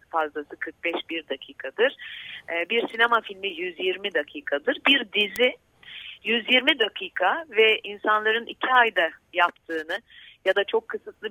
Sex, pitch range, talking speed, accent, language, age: female, 170-215 Hz, 110 wpm, native, Turkish, 40-59